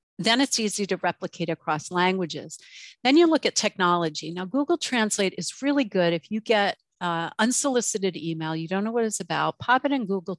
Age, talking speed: 50-69, 195 wpm